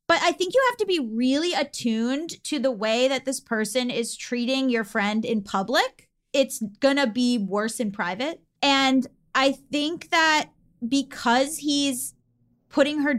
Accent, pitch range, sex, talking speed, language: American, 225-290 Hz, female, 165 wpm, English